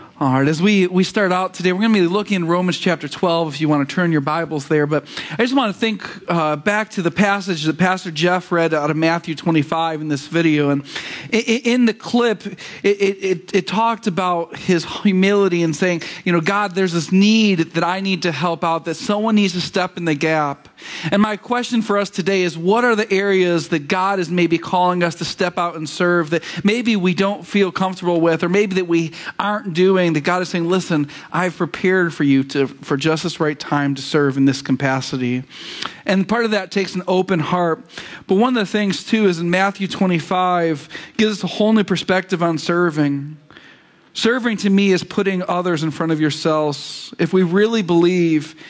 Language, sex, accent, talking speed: English, male, American, 220 wpm